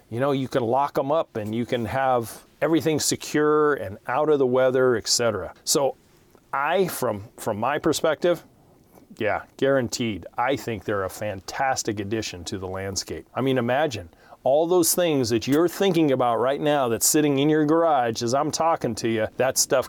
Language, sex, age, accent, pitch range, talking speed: English, male, 40-59, American, 115-150 Hz, 180 wpm